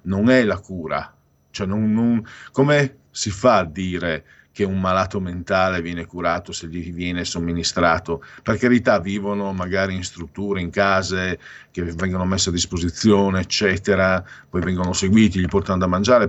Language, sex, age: Italian, male, 50-69